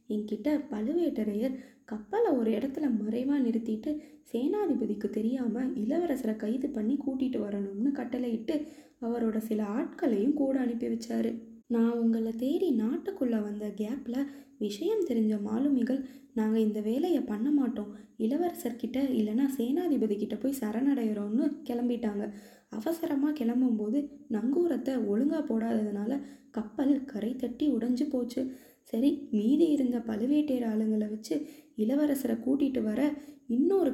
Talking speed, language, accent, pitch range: 110 wpm, Tamil, native, 220-280 Hz